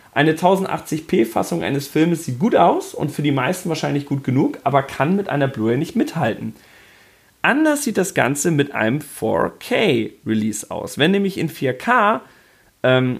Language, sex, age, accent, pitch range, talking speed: German, male, 40-59, German, 115-160 Hz, 155 wpm